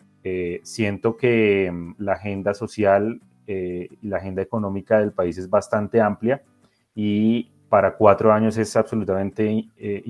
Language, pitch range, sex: Spanish, 100-120 Hz, male